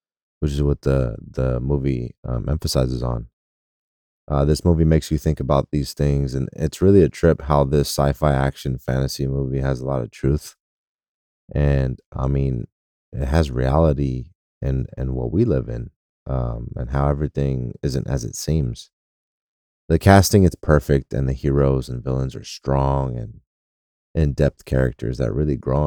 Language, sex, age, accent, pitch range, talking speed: English, male, 20-39, American, 65-80 Hz, 165 wpm